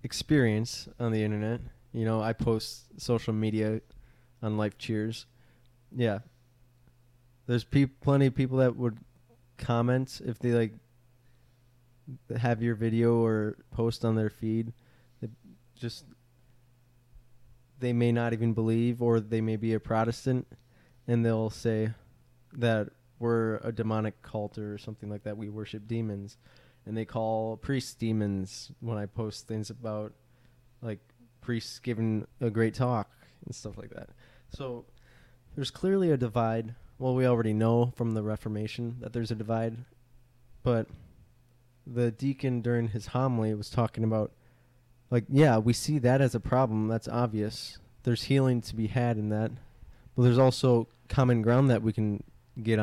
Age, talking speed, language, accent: 20-39, 150 wpm, English, American